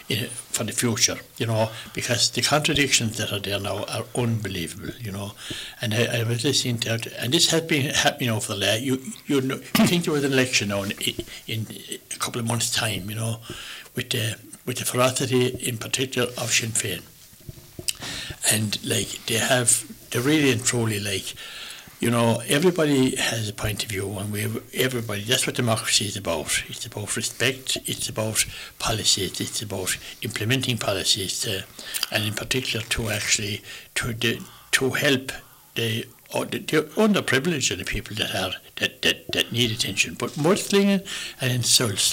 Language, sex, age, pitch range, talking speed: English, male, 60-79, 105-130 Hz, 180 wpm